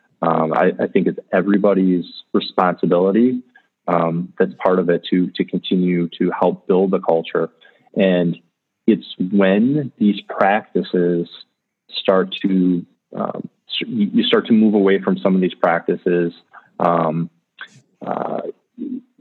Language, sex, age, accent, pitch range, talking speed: English, male, 20-39, American, 85-100 Hz, 125 wpm